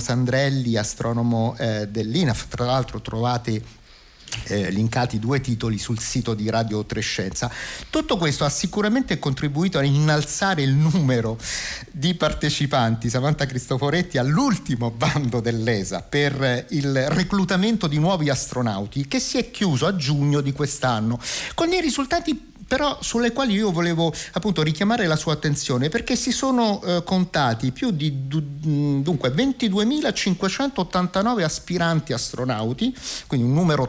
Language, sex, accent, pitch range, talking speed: Italian, male, native, 125-185 Hz, 135 wpm